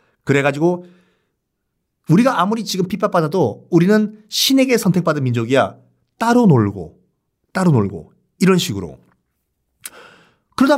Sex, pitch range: male, 130-215 Hz